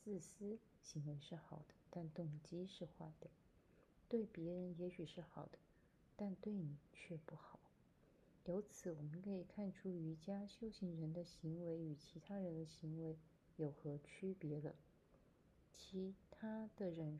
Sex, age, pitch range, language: female, 30-49, 165-210 Hz, Chinese